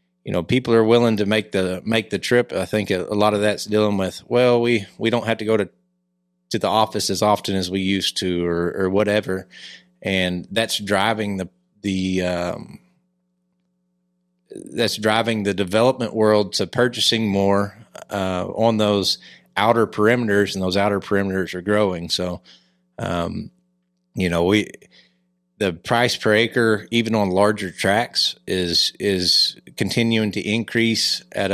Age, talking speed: 30-49, 160 wpm